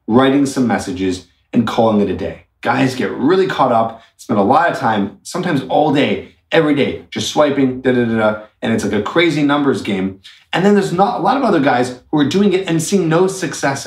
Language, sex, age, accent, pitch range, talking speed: English, male, 30-49, American, 110-160 Hz, 230 wpm